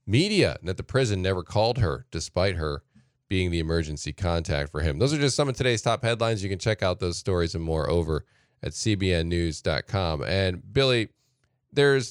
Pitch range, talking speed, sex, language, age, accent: 100-130 Hz, 185 wpm, male, English, 10-29, American